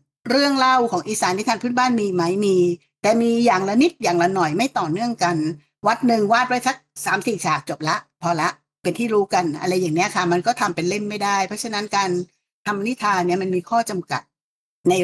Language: Thai